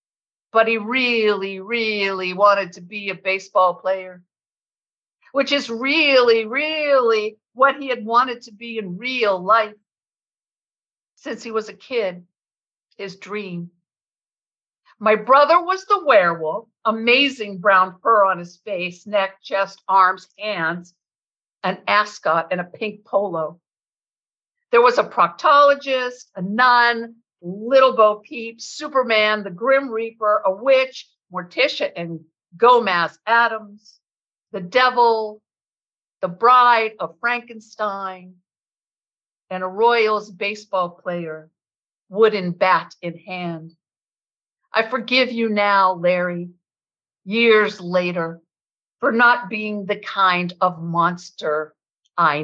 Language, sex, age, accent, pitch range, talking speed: English, female, 50-69, American, 185-235 Hz, 115 wpm